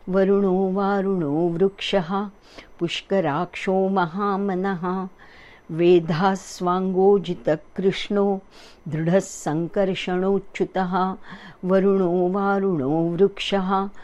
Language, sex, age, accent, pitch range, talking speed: English, female, 50-69, Indian, 180-195 Hz, 55 wpm